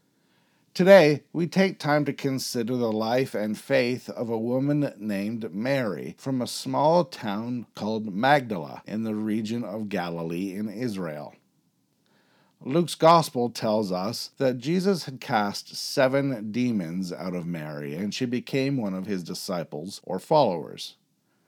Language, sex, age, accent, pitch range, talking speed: English, male, 50-69, American, 100-140 Hz, 140 wpm